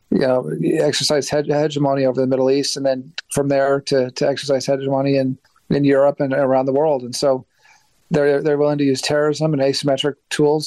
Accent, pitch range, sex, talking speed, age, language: American, 130-145 Hz, male, 195 wpm, 40-59, English